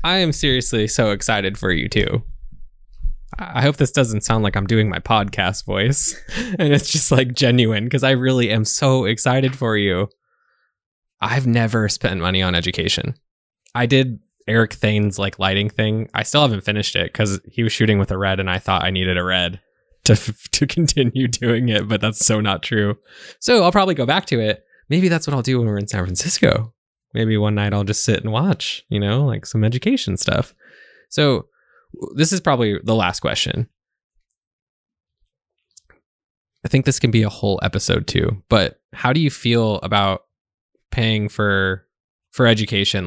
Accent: American